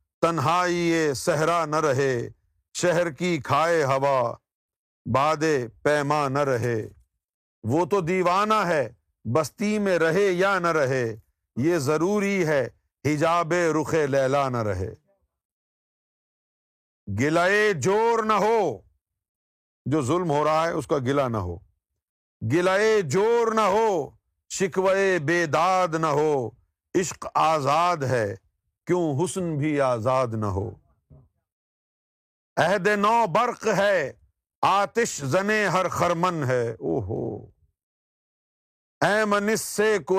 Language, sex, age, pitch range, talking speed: Urdu, male, 50-69, 115-175 Hz, 105 wpm